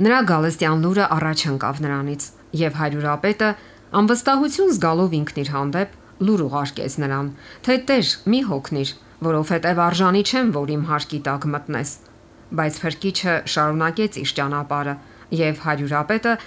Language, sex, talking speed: English, female, 120 wpm